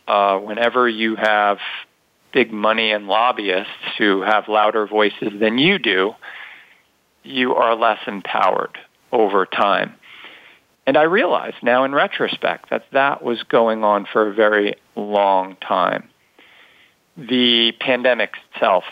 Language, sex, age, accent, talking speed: English, male, 40-59, American, 125 wpm